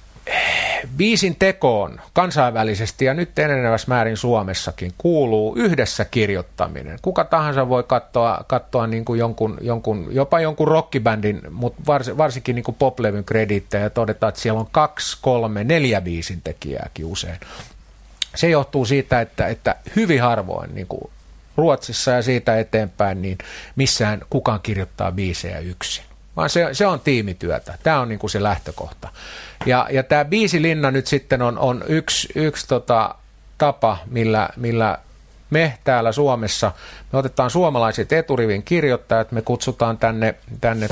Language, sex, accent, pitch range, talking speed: Finnish, male, native, 110-140 Hz, 140 wpm